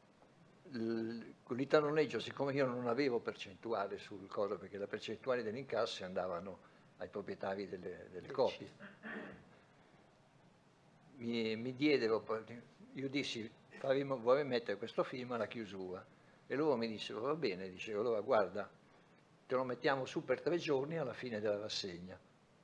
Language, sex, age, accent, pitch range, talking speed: Italian, male, 60-79, native, 110-145 Hz, 135 wpm